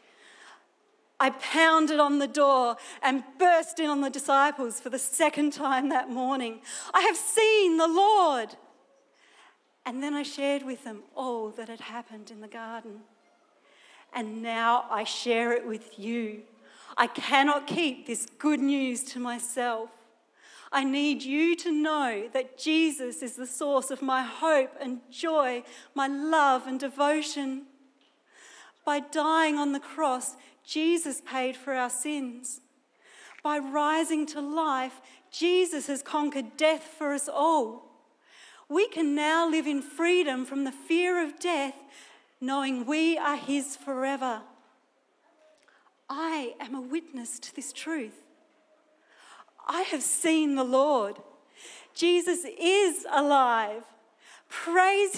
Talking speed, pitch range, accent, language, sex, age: 135 wpm, 255-315 Hz, Australian, English, female, 40-59